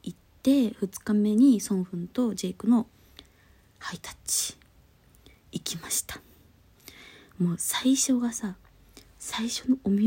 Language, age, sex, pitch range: Japanese, 20-39, female, 160-210 Hz